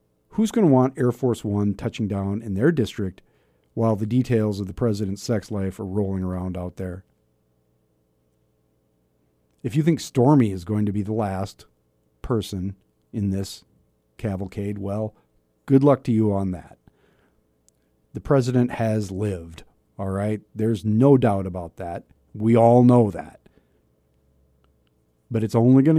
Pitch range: 95-125 Hz